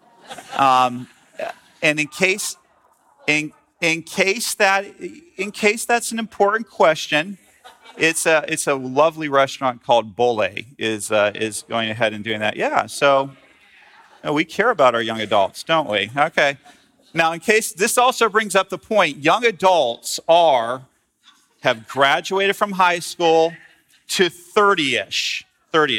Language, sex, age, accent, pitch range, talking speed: English, male, 40-59, American, 130-175 Hz, 150 wpm